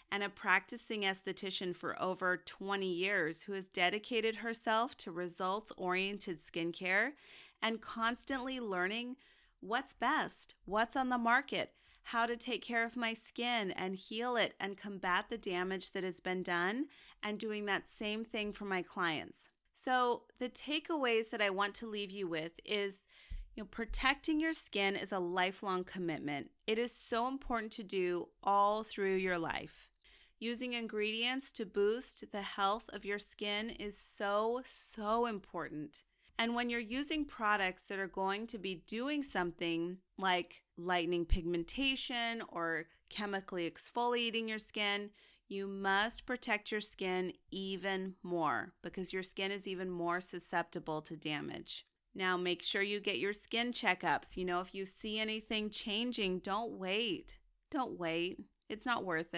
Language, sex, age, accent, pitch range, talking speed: English, female, 30-49, American, 185-230 Hz, 155 wpm